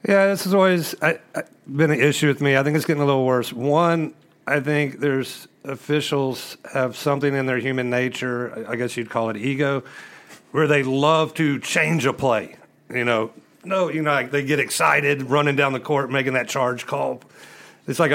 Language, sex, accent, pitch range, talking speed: English, male, American, 120-150 Hz, 195 wpm